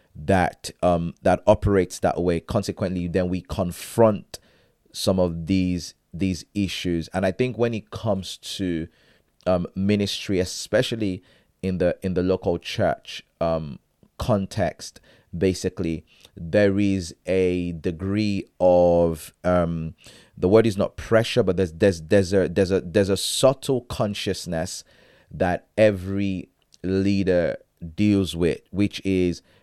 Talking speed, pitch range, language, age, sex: 130 wpm, 90-100 Hz, English, 30-49, male